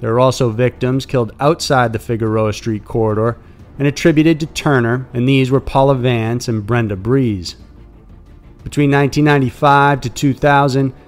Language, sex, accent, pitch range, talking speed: English, male, American, 115-140 Hz, 140 wpm